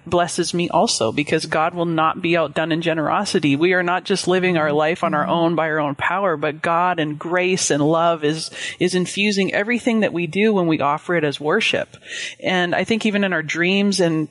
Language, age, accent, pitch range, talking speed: English, 30-49, American, 155-185 Hz, 220 wpm